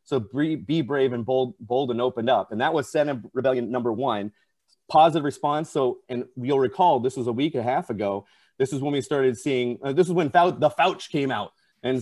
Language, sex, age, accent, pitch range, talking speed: English, male, 30-49, American, 120-160 Hz, 225 wpm